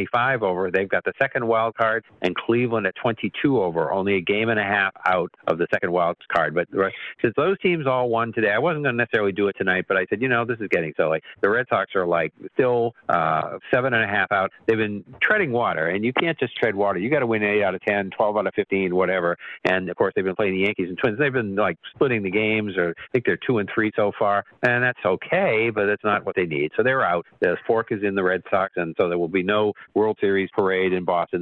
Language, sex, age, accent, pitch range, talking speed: English, male, 50-69, American, 95-115 Hz, 265 wpm